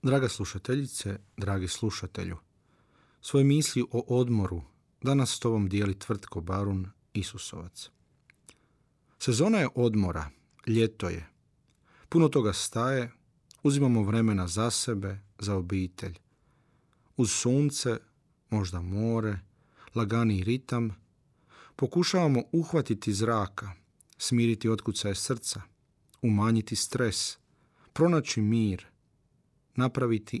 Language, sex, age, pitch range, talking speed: Croatian, male, 40-59, 105-135 Hz, 90 wpm